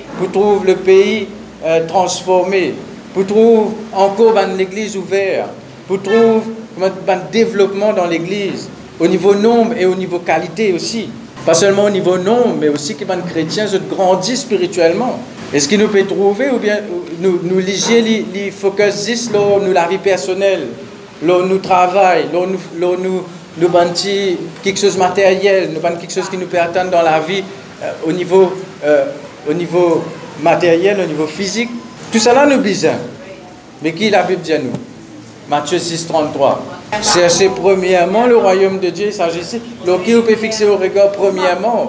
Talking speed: 150 wpm